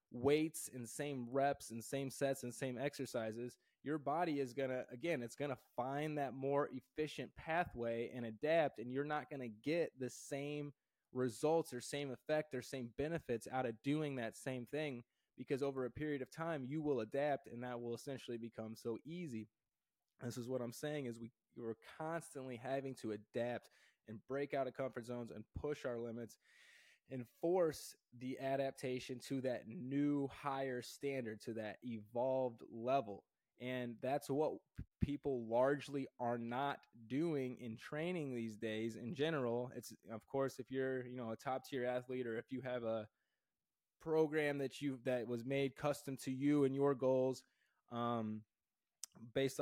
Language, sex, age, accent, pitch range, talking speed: English, male, 20-39, American, 120-140 Hz, 170 wpm